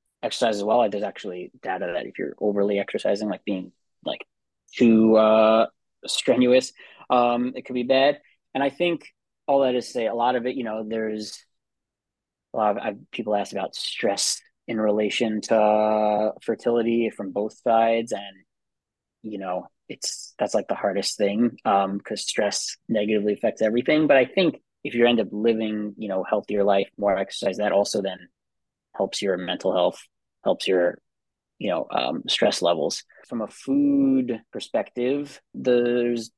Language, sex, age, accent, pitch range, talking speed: English, male, 20-39, American, 105-125 Hz, 170 wpm